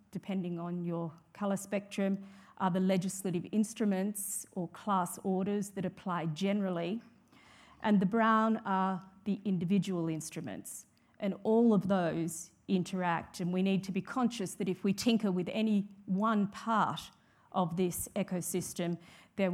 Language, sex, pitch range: English, female, 175-205 Hz